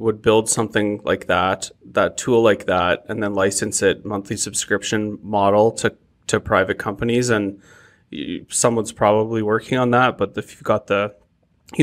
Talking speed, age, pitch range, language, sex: 160 wpm, 20-39, 105-115 Hz, English, male